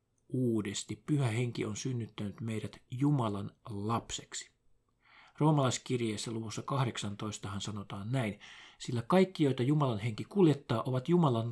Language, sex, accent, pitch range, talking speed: Finnish, male, native, 110-140 Hz, 110 wpm